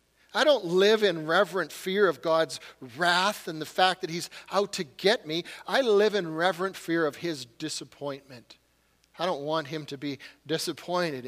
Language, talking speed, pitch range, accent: English, 175 wpm, 160-205 Hz, American